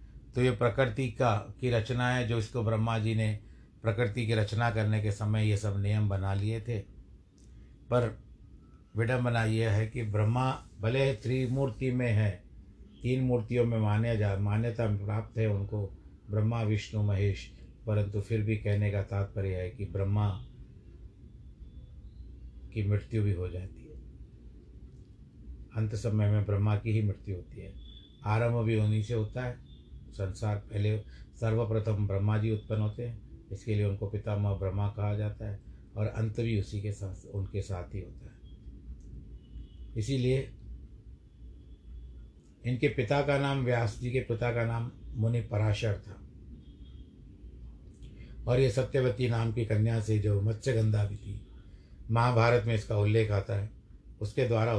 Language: Hindi